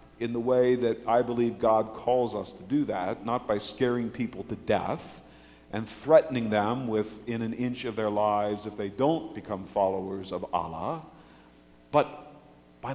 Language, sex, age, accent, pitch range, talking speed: English, male, 50-69, American, 95-135 Hz, 165 wpm